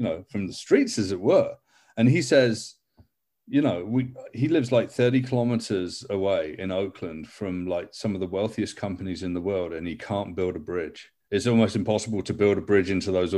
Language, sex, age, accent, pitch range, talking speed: English, male, 30-49, British, 95-120 Hz, 210 wpm